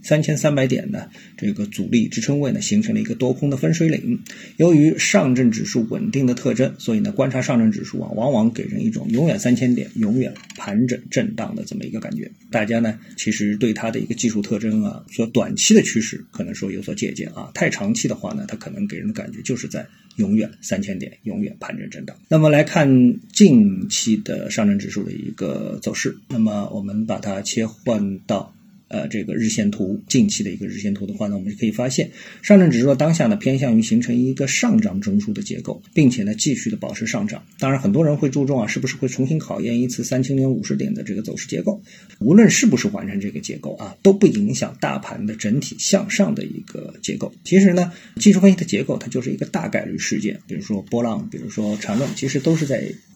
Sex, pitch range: male, 125-210 Hz